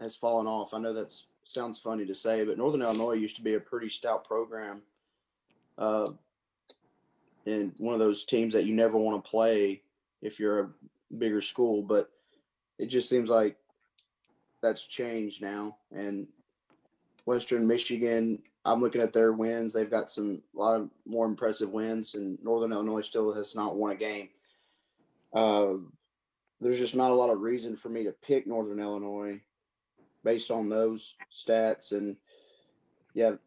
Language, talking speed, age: English, 165 wpm, 20-39